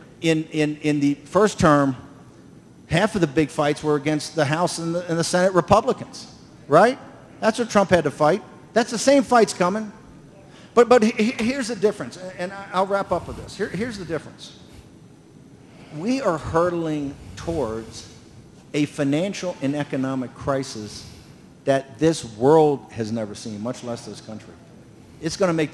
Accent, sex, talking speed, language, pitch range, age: American, male, 165 wpm, English, 150-215 Hz, 50-69